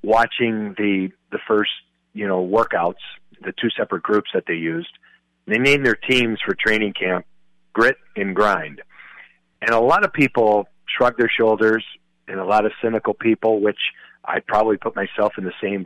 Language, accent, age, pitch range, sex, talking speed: English, American, 50-69, 100-120 Hz, male, 175 wpm